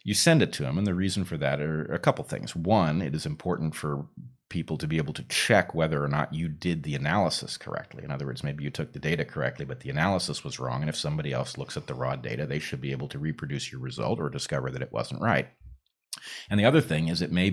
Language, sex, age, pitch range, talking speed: English, male, 30-49, 70-95 Hz, 265 wpm